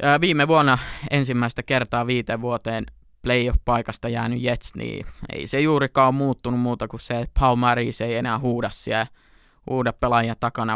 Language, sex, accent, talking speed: Finnish, male, native, 150 wpm